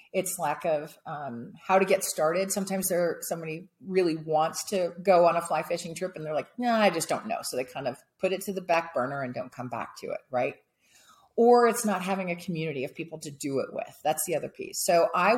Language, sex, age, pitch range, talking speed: English, female, 40-59, 160-200 Hz, 250 wpm